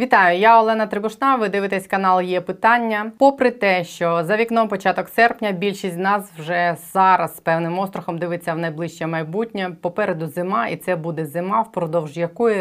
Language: Ukrainian